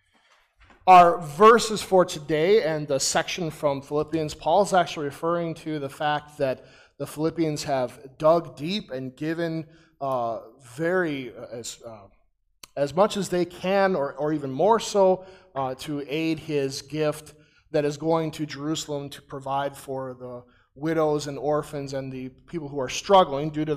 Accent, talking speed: American, 155 wpm